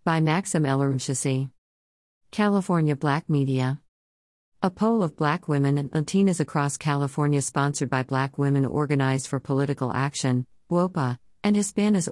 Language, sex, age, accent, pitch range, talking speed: English, female, 50-69, American, 130-155 Hz, 135 wpm